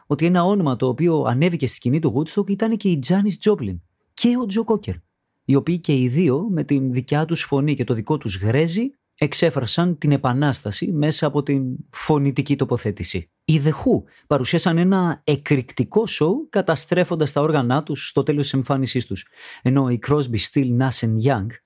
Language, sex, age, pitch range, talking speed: Greek, male, 30-49, 130-175 Hz, 175 wpm